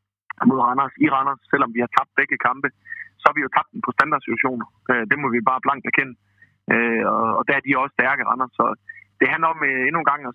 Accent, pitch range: native, 110-145 Hz